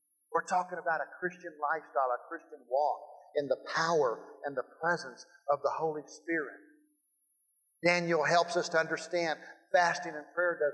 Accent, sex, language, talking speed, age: American, male, English, 155 wpm, 50-69